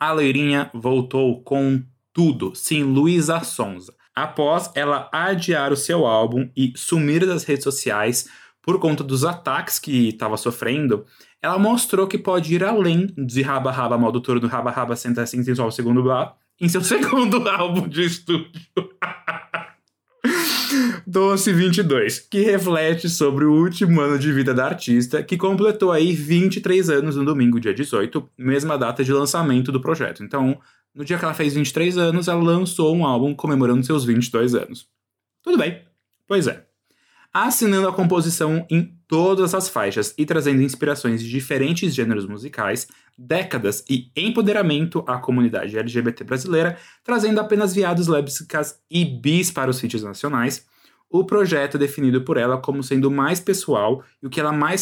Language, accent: Portuguese, Brazilian